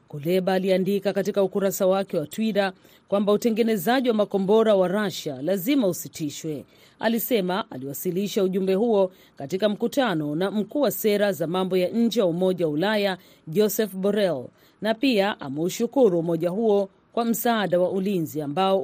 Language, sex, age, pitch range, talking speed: Swahili, female, 40-59, 175-220 Hz, 145 wpm